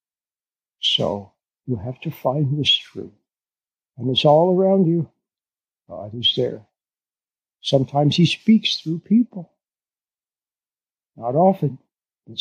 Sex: male